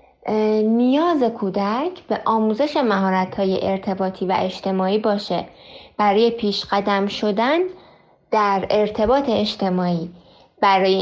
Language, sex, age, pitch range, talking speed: Persian, female, 20-39, 195-240 Hz, 95 wpm